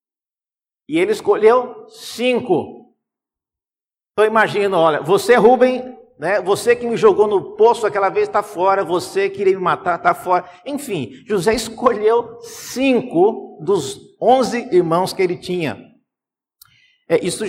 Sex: male